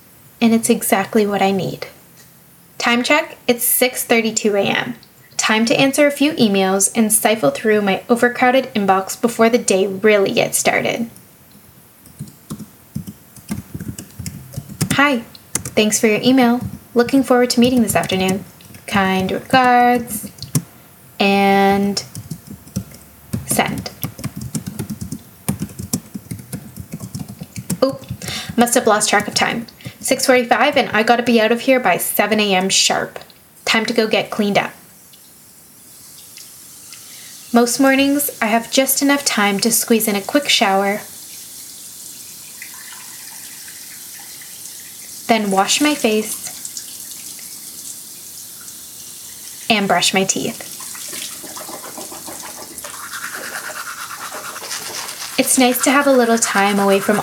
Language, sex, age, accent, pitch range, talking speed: English, female, 10-29, American, 200-250 Hz, 105 wpm